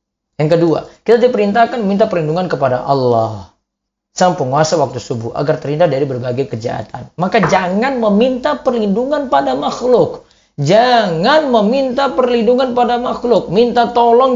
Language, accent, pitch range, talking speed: Indonesian, native, 140-230 Hz, 120 wpm